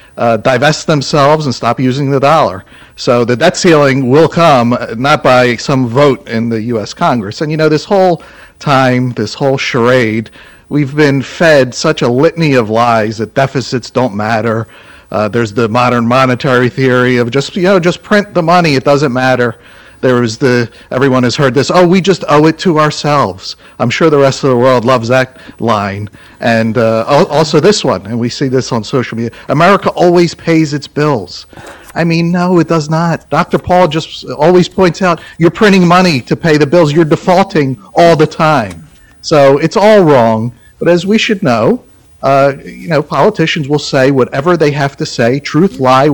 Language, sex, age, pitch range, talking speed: English, male, 50-69, 125-160 Hz, 190 wpm